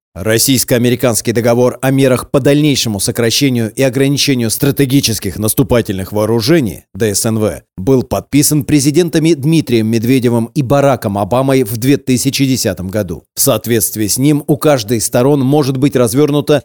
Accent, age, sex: native, 30-49, male